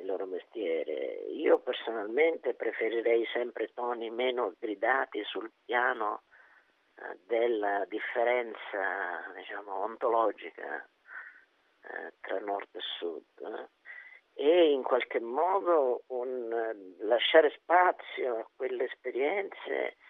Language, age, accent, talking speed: Italian, 50-69, native, 90 wpm